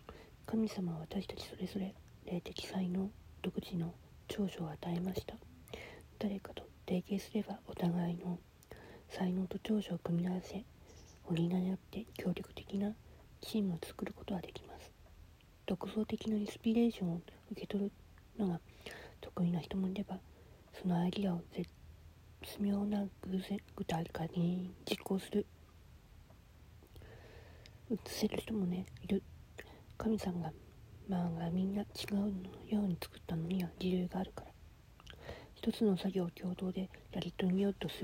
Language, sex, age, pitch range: Japanese, female, 40-59, 175-200 Hz